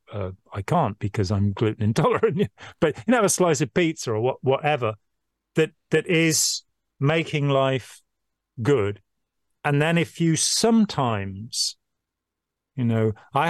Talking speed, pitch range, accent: 140 wpm, 110-145 Hz, British